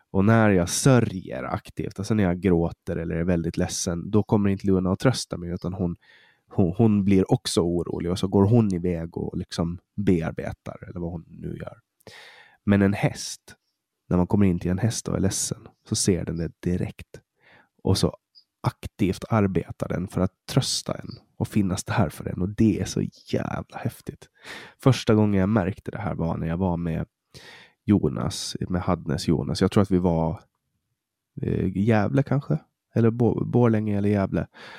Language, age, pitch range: Swedish, 20-39, 85-110 Hz